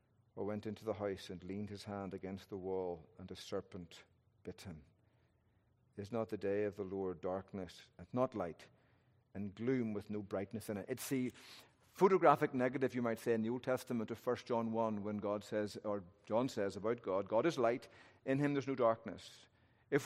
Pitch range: 105-140 Hz